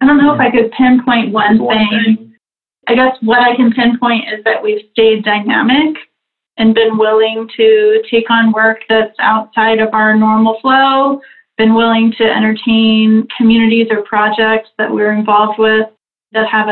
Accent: American